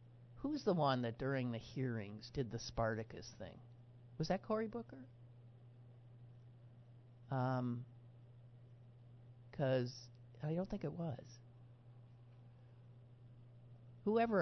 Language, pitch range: English, 120-130 Hz